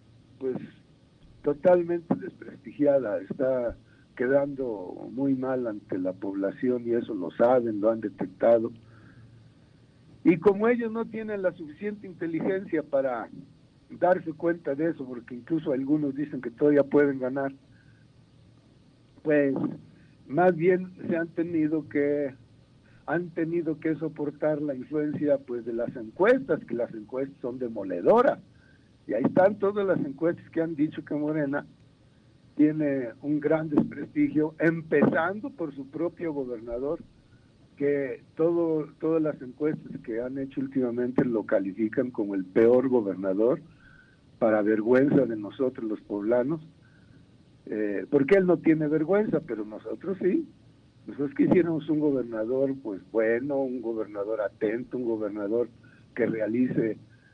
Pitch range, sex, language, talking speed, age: 125-160 Hz, male, Spanish, 130 wpm, 60-79